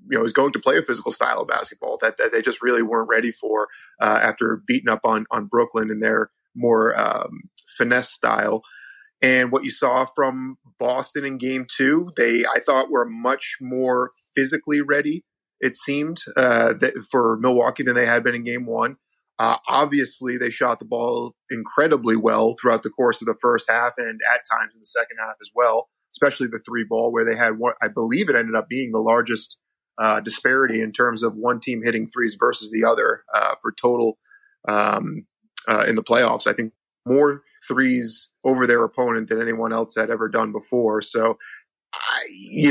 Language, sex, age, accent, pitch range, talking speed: English, male, 30-49, American, 115-135 Hz, 195 wpm